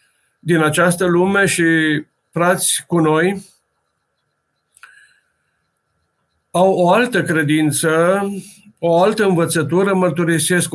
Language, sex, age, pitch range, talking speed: Romanian, male, 50-69, 155-180 Hz, 85 wpm